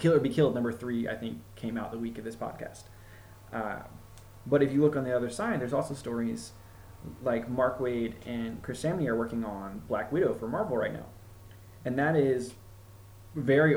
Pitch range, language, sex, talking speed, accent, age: 110-135 Hz, English, male, 195 wpm, American, 20-39